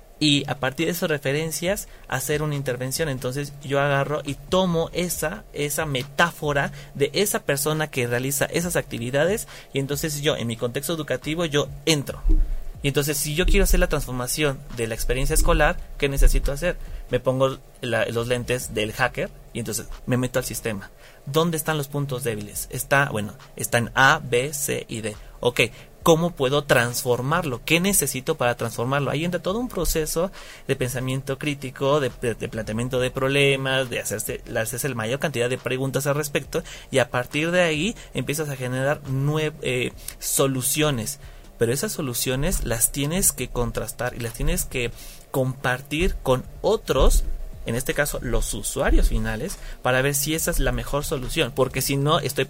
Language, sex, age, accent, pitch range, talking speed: Spanish, male, 30-49, Mexican, 125-155 Hz, 170 wpm